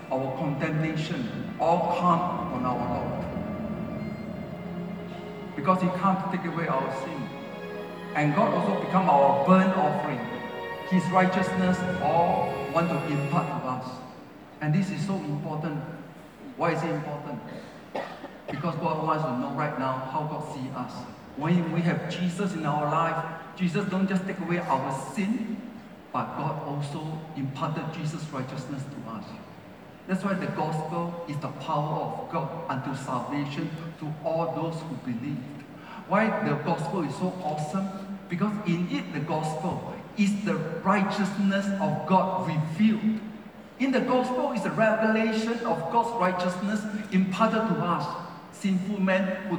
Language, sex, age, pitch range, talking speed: English, male, 50-69, 150-195 Hz, 145 wpm